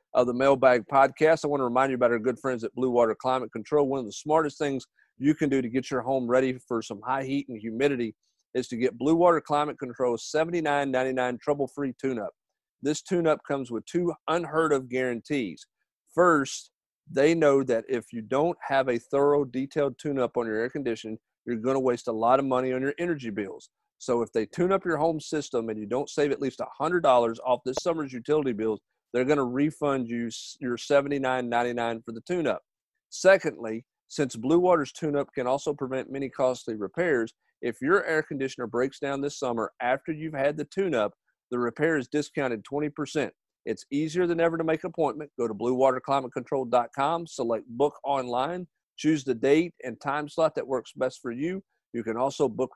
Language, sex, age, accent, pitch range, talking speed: English, male, 40-59, American, 125-150 Hz, 195 wpm